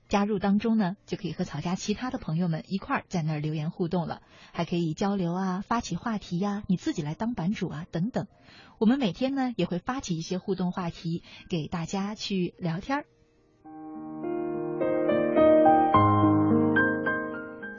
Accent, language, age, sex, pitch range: native, Chinese, 30-49, female, 170-230 Hz